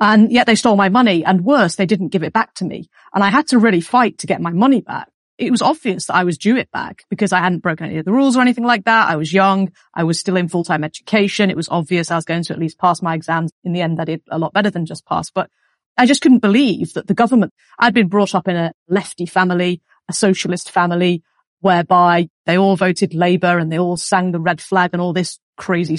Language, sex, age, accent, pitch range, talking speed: English, female, 40-59, British, 170-200 Hz, 265 wpm